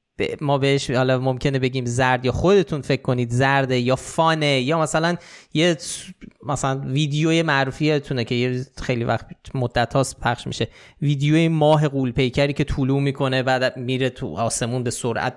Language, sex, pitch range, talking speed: Persian, male, 120-150 Hz, 155 wpm